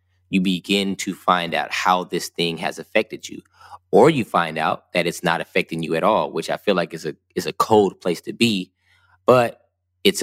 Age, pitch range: 20-39, 90-100 Hz